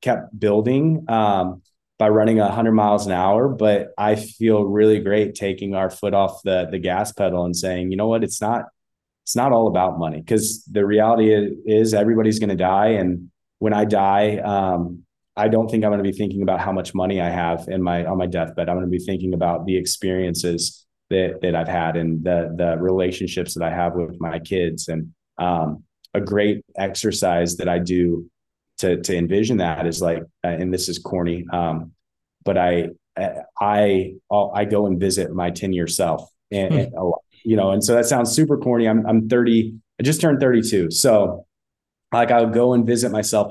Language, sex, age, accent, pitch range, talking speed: English, male, 20-39, American, 90-110 Hz, 200 wpm